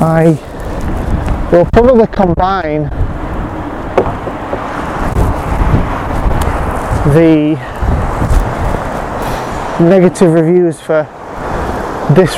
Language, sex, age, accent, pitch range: English, male, 20-39, British, 150-185 Hz